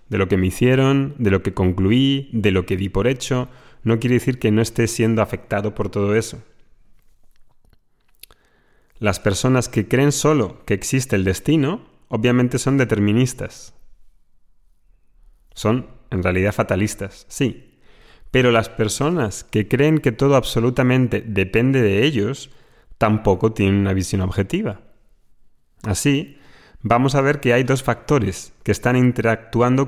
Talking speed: 140 wpm